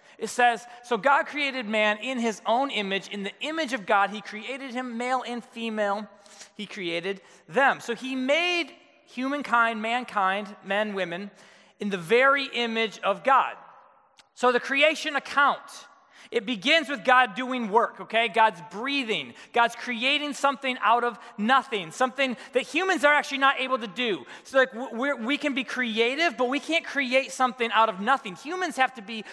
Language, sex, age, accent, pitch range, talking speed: English, male, 20-39, American, 210-270 Hz, 170 wpm